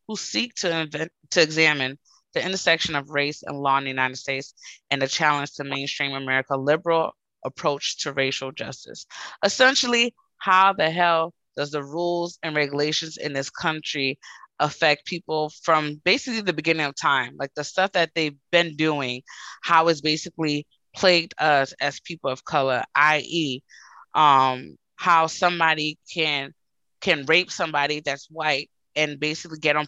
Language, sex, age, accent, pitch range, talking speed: English, female, 20-39, American, 140-165 Hz, 155 wpm